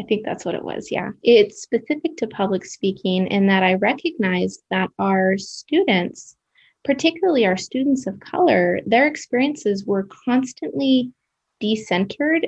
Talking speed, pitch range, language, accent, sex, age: 140 wpm, 190-230 Hz, English, American, female, 20-39